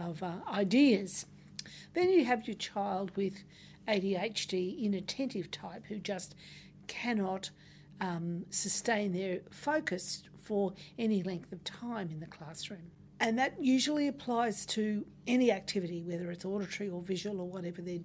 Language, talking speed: English, 135 wpm